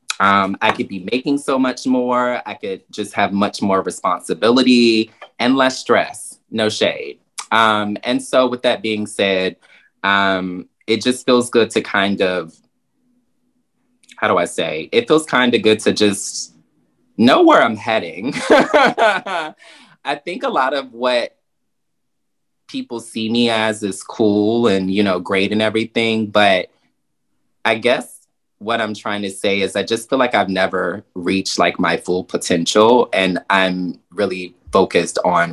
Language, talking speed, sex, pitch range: English, 155 wpm, male, 95-120 Hz